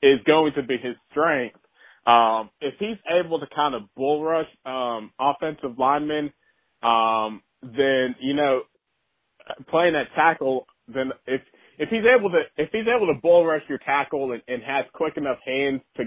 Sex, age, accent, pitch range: male, 30-49, American, 130-160 Hz